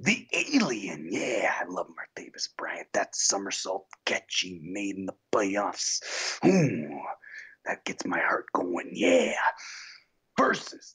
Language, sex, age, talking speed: English, male, 30-49, 125 wpm